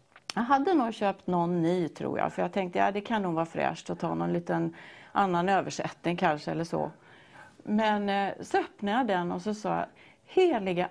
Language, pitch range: Swedish, 175-235 Hz